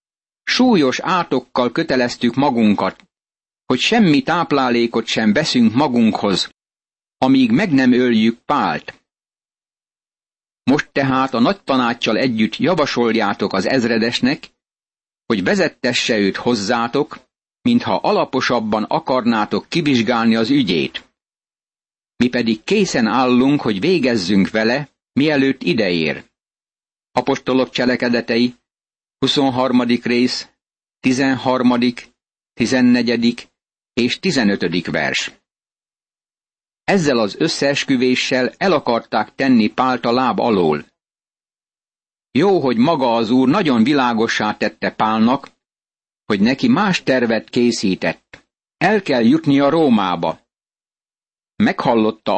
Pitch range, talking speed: 115-140 Hz, 95 wpm